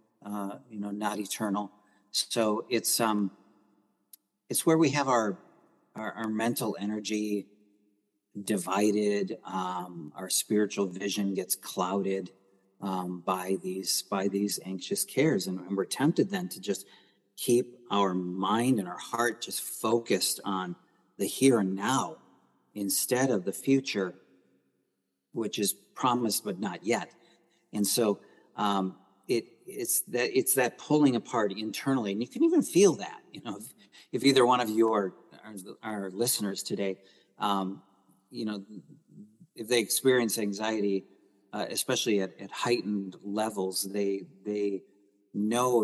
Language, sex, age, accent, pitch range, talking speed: English, male, 50-69, American, 95-115 Hz, 140 wpm